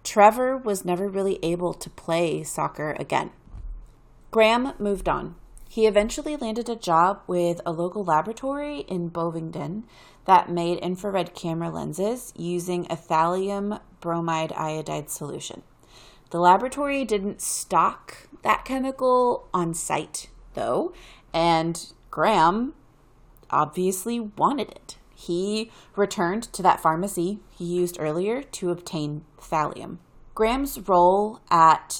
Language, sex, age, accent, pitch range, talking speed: English, female, 30-49, American, 160-200 Hz, 115 wpm